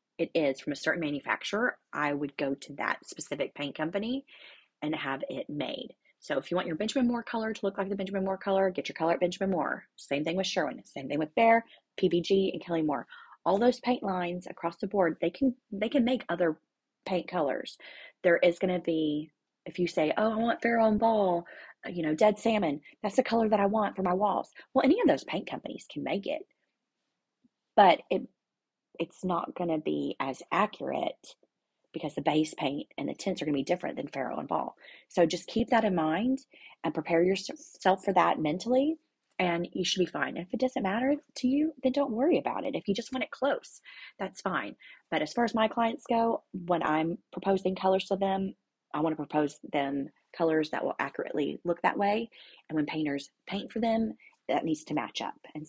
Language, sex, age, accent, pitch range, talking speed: English, female, 30-49, American, 160-225 Hz, 215 wpm